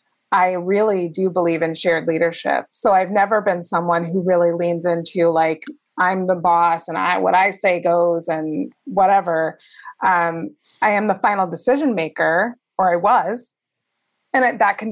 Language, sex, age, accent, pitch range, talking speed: English, female, 20-39, American, 170-230 Hz, 170 wpm